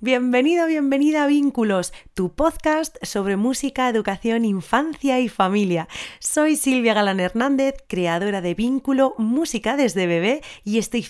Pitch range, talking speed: 185-260 Hz, 130 wpm